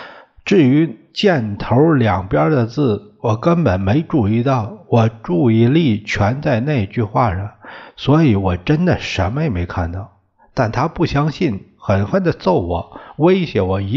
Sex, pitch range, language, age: male, 95-135 Hz, Chinese, 60-79